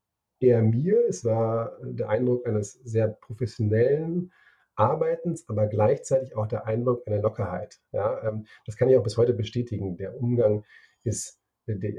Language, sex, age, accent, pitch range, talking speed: German, male, 40-59, German, 105-125 Hz, 145 wpm